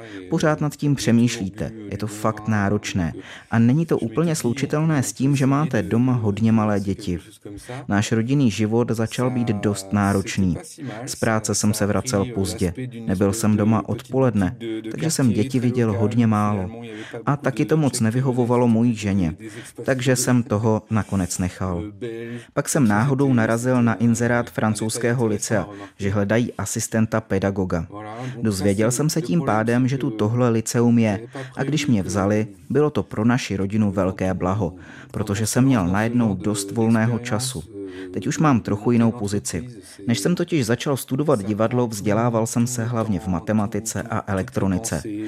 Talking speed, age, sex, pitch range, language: 150 wpm, 30-49, male, 100-125 Hz, Czech